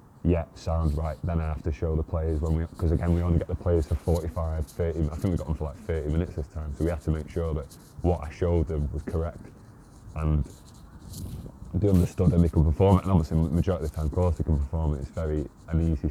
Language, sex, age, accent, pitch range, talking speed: English, male, 20-39, British, 80-95 Hz, 265 wpm